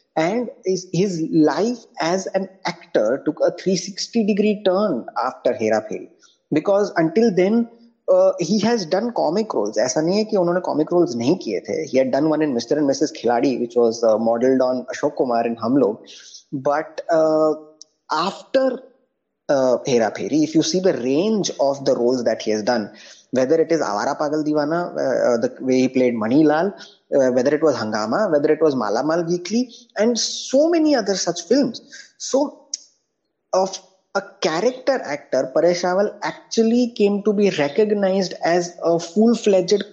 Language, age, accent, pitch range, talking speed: Hindi, 20-39, native, 150-220 Hz, 175 wpm